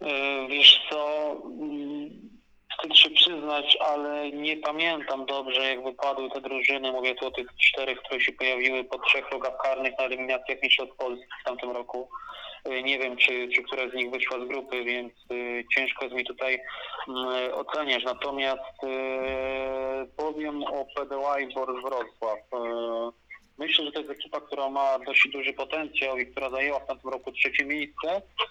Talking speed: 155 wpm